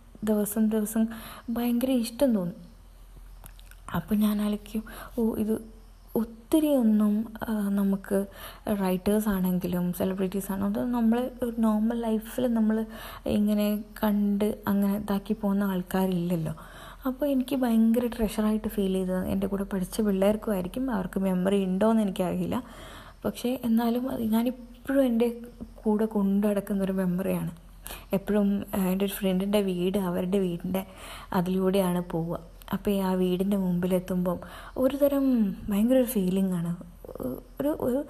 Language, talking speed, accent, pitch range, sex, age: Malayalam, 105 wpm, native, 190-225 Hz, female, 20-39